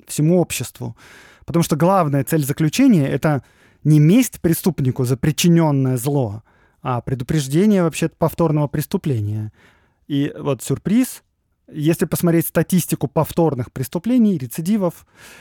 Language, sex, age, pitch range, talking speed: Russian, male, 20-39, 130-175 Hz, 110 wpm